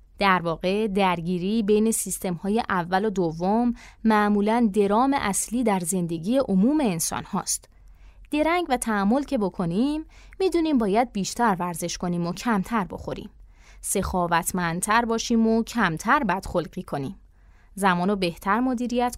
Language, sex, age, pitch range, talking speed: Persian, female, 20-39, 180-240 Hz, 125 wpm